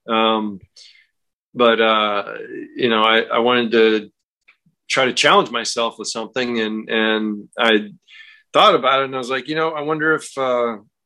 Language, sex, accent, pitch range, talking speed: English, male, American, 110-135 Hz, 170 wpm